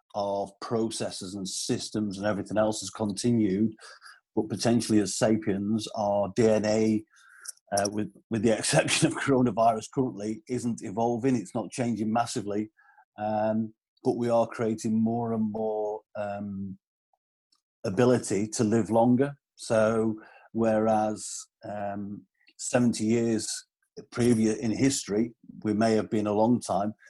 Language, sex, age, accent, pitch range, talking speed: English, male, 50-69, British, 105-120 Hz, 125 wpm